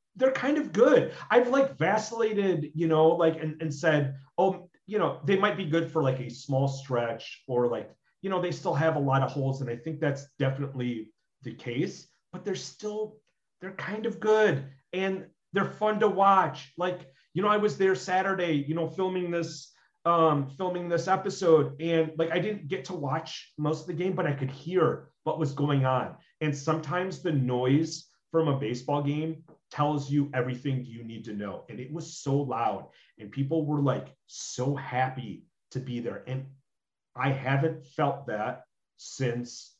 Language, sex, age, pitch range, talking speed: English, male, 30-49, 130-175 Hz, 185 wpm